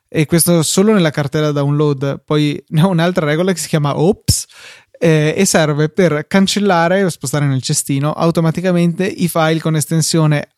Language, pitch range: Italian, 140-165 Hz